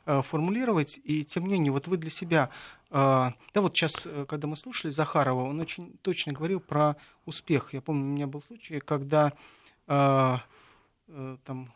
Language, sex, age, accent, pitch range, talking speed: Russian, male, 40-59, native, 140-185 Hz, 155 wpm